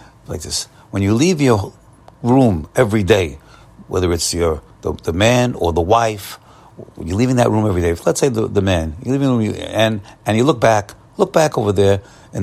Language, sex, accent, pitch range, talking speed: English, male, American, 100-130 Hz, 210 wpm